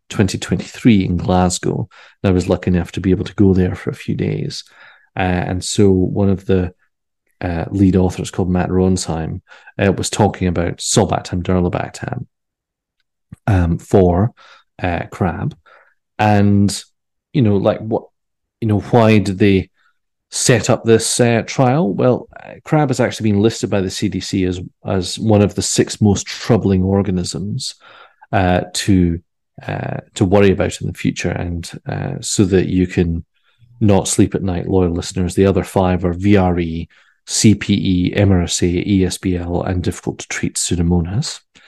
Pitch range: 90-105 Hz